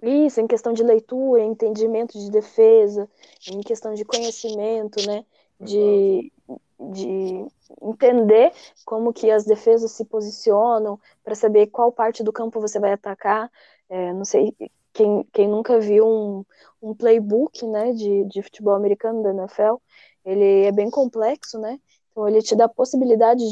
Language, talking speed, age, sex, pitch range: Portuguese, 150 wpm, 10-29, female, 205-235 Hz